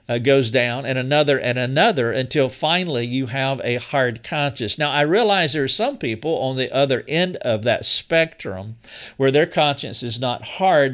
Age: 50-69